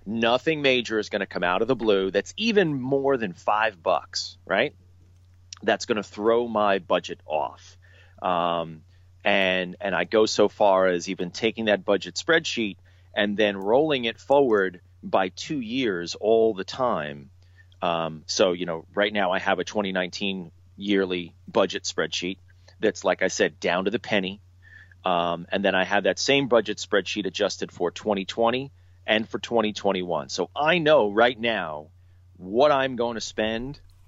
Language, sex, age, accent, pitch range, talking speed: English, male, 30-49, American, 90-110 Hz, 165 wpm